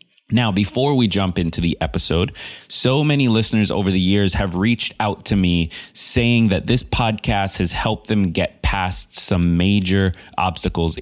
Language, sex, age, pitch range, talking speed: English, male, 30-49, 90-120 Hz, 165 wpm